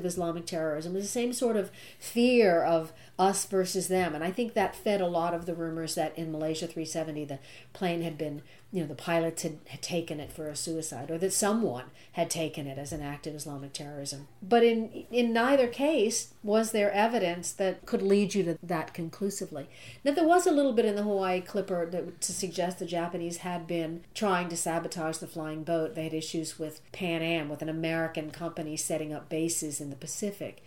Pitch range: 155-195 Hz